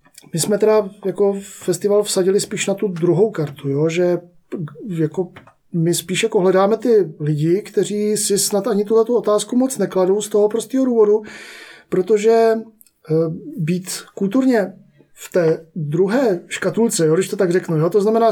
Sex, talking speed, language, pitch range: male, 155 wpm, Czech, 165-205 Hz